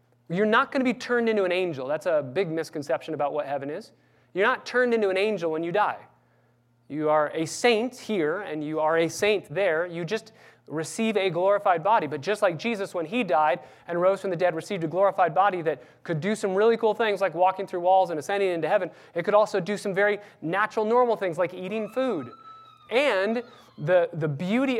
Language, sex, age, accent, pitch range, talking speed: English, male, 30-49, American, 130-200 Hz, 220 wpm